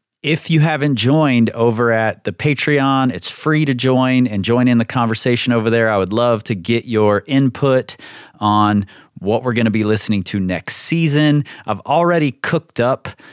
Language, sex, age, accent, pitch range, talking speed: English, male, 30-49, American, 95-120 Hz, 180 wpm